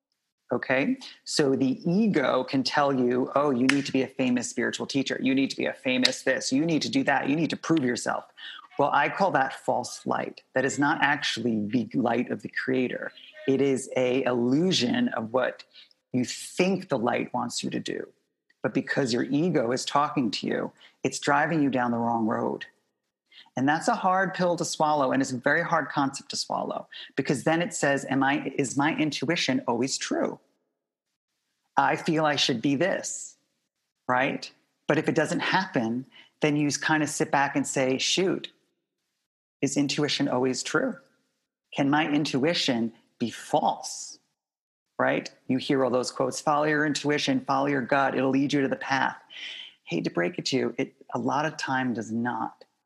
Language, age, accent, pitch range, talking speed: English, 30-49, American, 130-155 Hz, 185 wpm